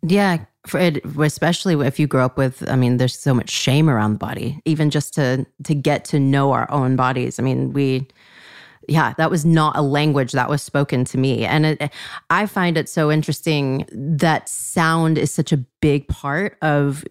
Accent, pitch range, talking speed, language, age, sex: American, 140-180 Hz, 200 wpm, English, 30-49, female